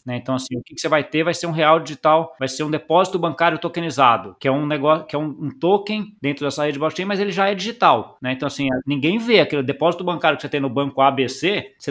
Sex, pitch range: male, 130-160 Hz